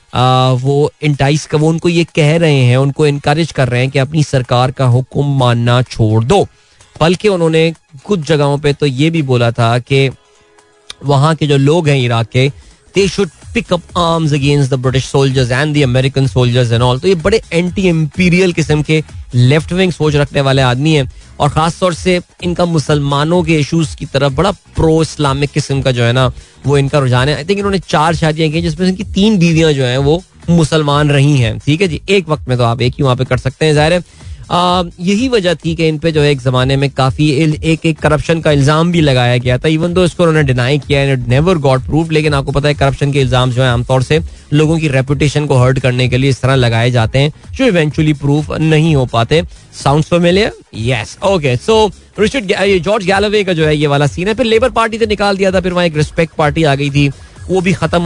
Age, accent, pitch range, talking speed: 20-39, native, 130-165 Hz, 200 wpm